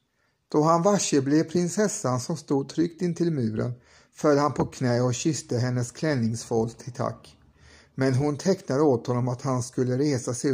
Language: Swedish